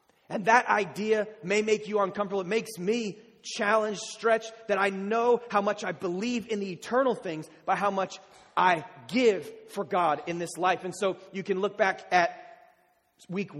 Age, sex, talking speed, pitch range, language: 30-49, male, 180 wpm, 175-210 Hz, English